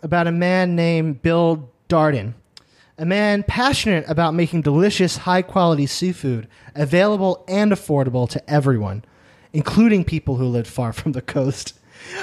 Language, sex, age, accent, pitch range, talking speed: English, male, 30-49, American, 135-180 Hz, 130 wpm